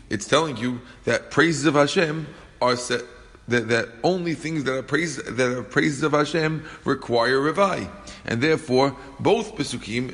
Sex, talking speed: male, 160 wpm